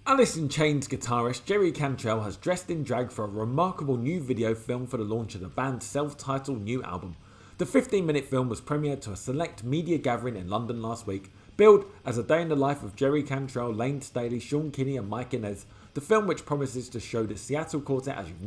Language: English